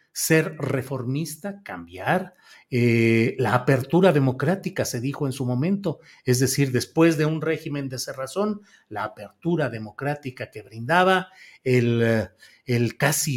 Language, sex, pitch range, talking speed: Spanish, male, 125-165 Hz, 125 wpm